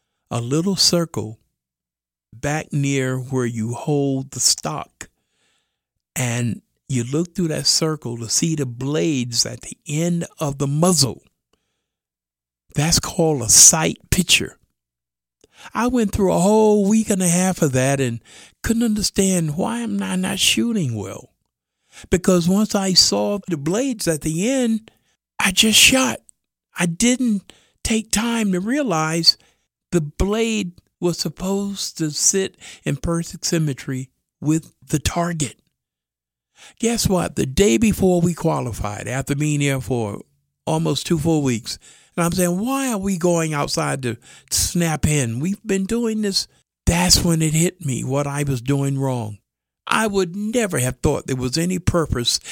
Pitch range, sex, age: 130-190 Hz, male, 50-69